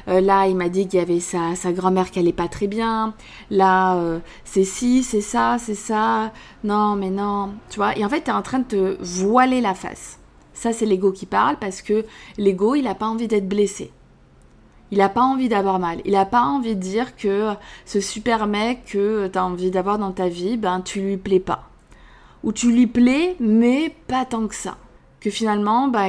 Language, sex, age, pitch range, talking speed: French, female, 20-39, 185-230 Hz, 220 wpm